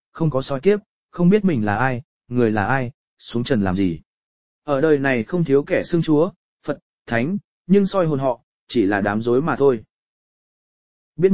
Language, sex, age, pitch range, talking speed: English, male, 20-39, 115-165 Hz, 195 wpm